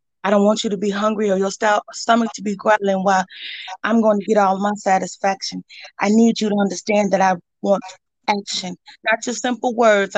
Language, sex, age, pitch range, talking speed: English, female, 30-49, 200-245 Hz, 200 wpm